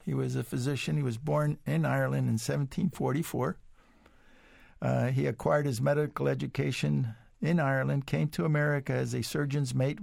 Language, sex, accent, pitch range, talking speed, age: English, male, American, 110-150 Hz, 155 wpm, 60-79